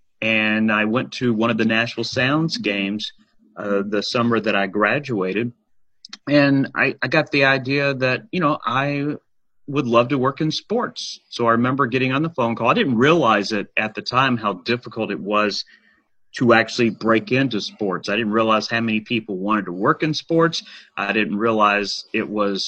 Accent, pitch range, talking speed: American, 105-135 Hz, 190 wpm